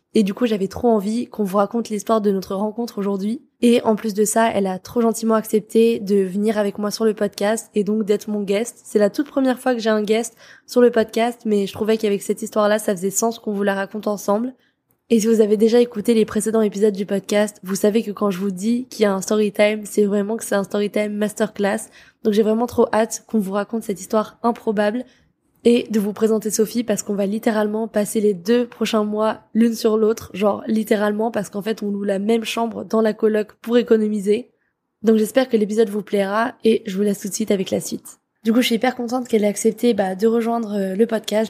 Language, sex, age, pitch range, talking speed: French, female, 20-39, 210-230 Hz, 240 wpm